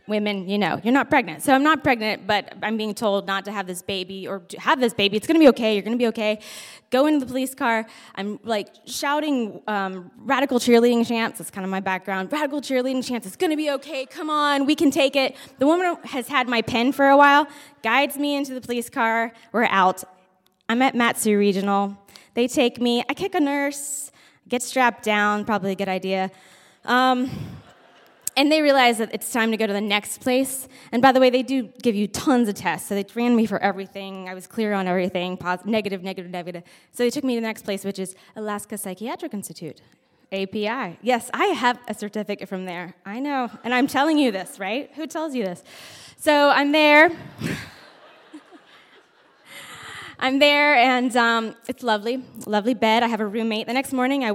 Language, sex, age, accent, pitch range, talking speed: English, female, 20-39, American, 200-265 Hz, 210 wpm